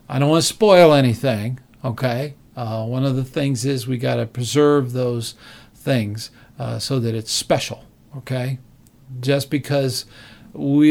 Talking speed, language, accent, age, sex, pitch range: 145 wpm, English, American, 50-69, male, 120-145 Hz